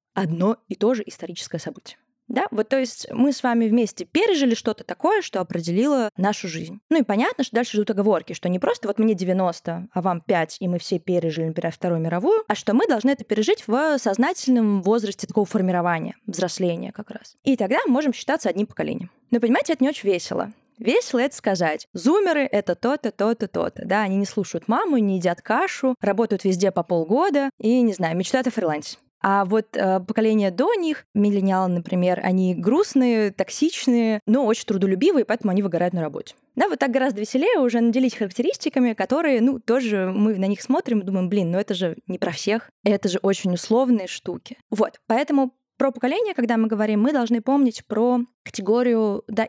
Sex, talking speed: female, 195 wpm